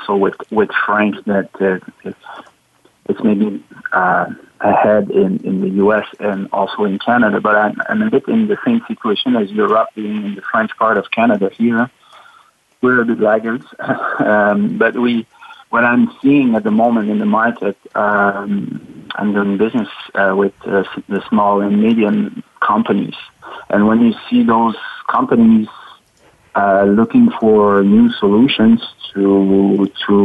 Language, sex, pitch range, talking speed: English, male, 100-125 Hz, 155 wpm